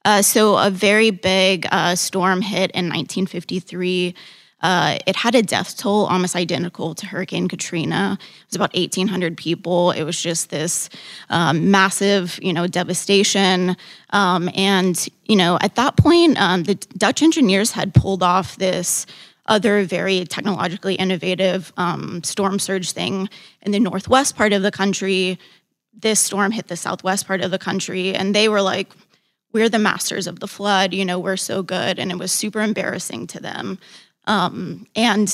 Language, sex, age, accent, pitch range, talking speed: English, female, 20-39, American, 180-205 Hz, 165 wpm